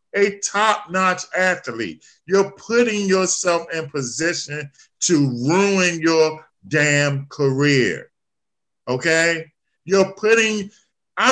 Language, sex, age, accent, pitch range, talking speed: English, male, 50-69, American, 185-255 Hz, 90 wpm